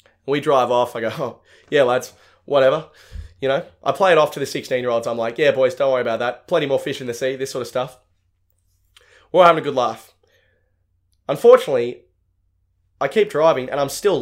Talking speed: 205 wpm